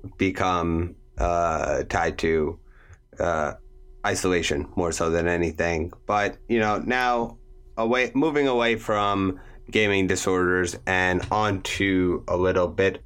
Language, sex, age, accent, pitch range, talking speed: English, male, 30-49, American, 90-115 Hz, 120 wpm